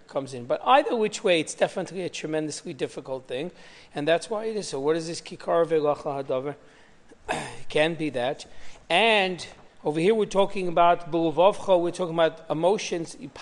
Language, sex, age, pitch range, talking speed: English, male, 40-59, 155-205 Hz, 175 wpm